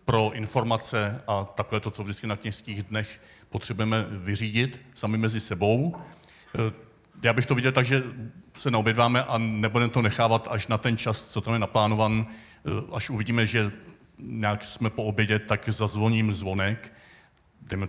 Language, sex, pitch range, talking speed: Czech, male, 105-125 Hz, 155 wpm